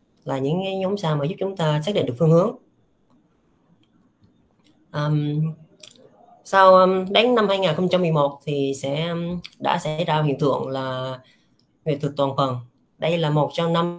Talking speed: 150 wpm